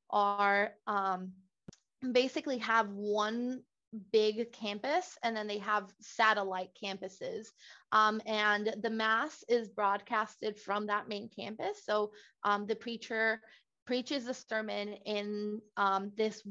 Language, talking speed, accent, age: English, 120 wpm, American, 20-39